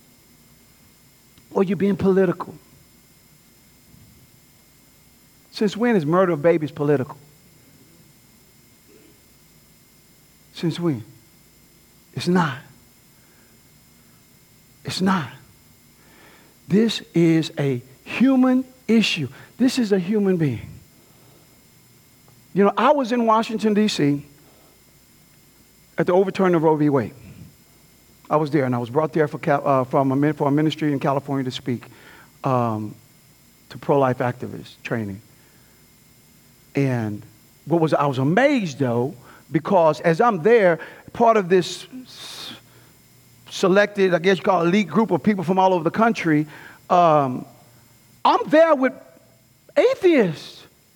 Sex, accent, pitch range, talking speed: male, American, 135-195 Hz, 120 wpm